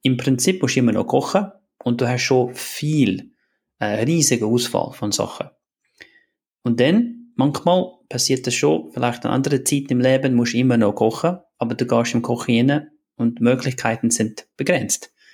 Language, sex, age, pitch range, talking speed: German, male, 30-49, 115-140 Hz, 175 wpm